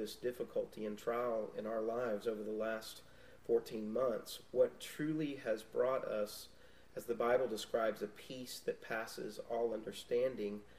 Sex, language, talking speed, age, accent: male, English, 150 wpm, 40-59, American